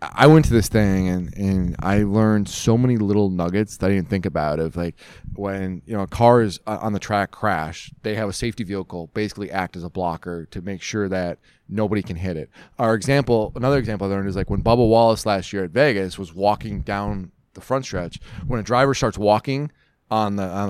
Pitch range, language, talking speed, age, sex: 95-115 Hz, English, 215 wpm, 20-39, male